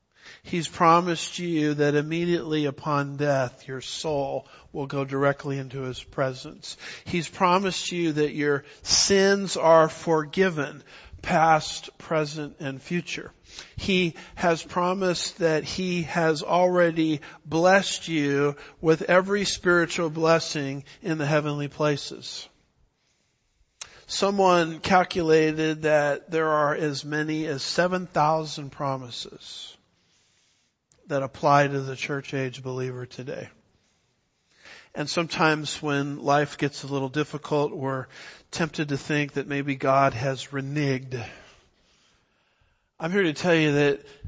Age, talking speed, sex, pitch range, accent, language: 50-69, 115 wpm, male, 140-170 Hz, American, English